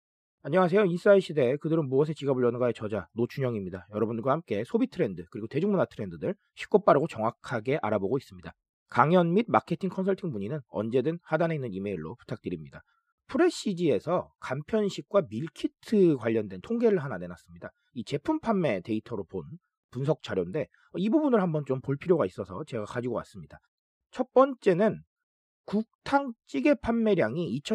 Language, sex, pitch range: Korean, male, 135-220 Hz